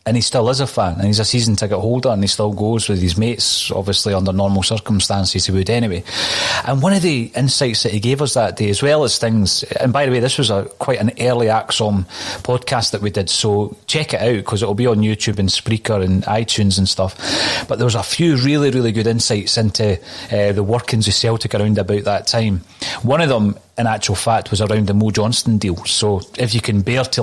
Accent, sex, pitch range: British, male, 100-120 Hz